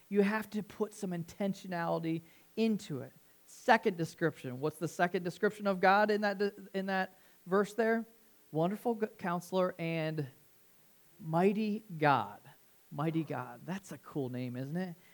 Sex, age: male, 40-59